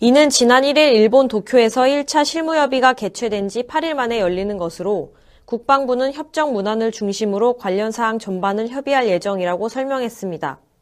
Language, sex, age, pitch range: Korean, female, 20-39, 205-275 Hz